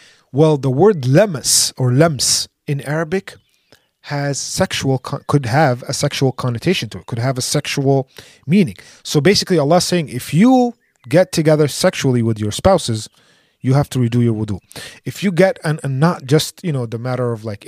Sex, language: male, English